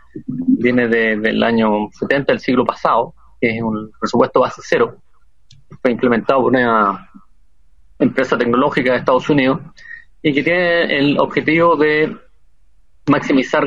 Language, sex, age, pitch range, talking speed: Spanish, male, 30-49, 120-155 Hz, 130 wpm